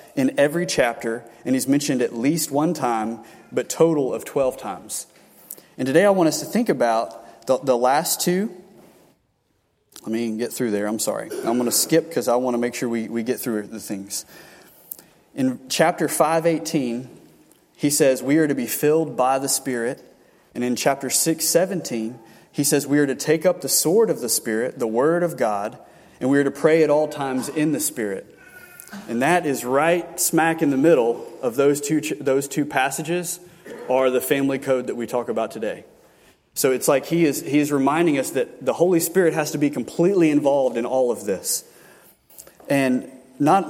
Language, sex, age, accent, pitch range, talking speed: English, male, 30-49, American, 130-165 Hz, 195 wpm